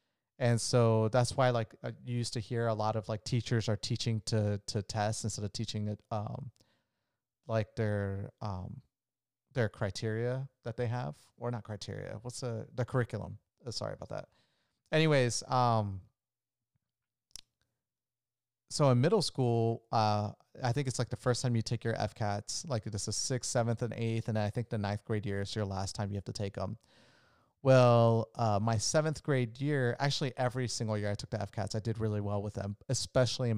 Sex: male